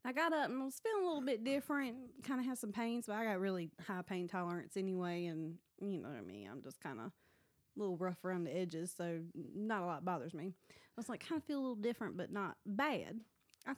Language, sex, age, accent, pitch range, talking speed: English, female, 20-39, American, 175-225 Hz, 255 wpm